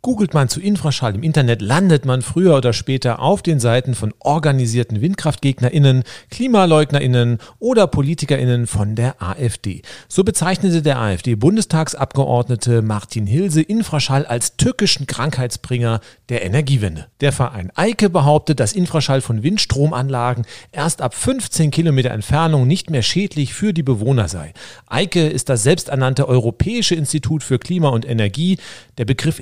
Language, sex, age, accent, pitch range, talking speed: German, male, 40-59, German, 120-160 Hz, 135 wpm